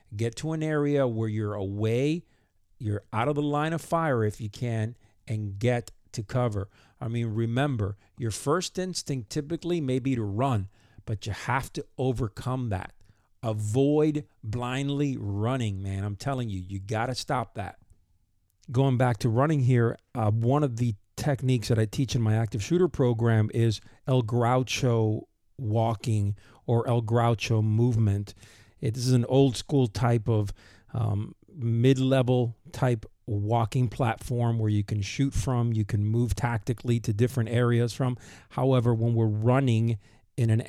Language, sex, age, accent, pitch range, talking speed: English, male, 50-69, American, 110-130 Hz, 160 wpm